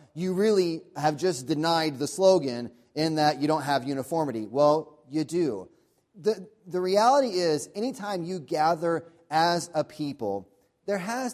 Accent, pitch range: American, 145-175 Hz